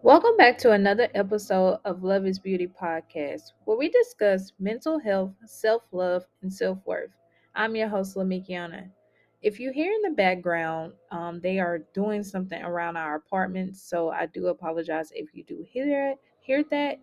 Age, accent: 20-39, American